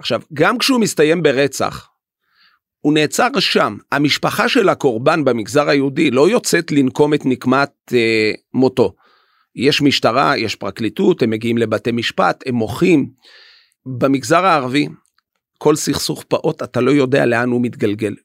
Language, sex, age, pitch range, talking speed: Hebrew, male, 40-59, 125-160 Hz, 135 wpm